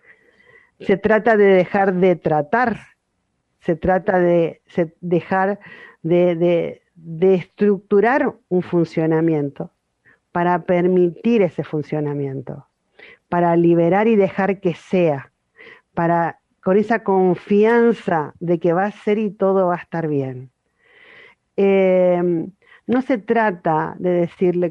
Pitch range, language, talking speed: 170-215 Hz, Spanish, 110 wpm